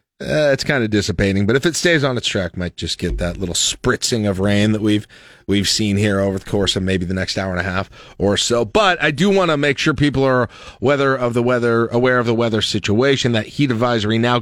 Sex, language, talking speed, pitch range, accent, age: male, English, 265 wpm, 105-130 Hz, American, 40-59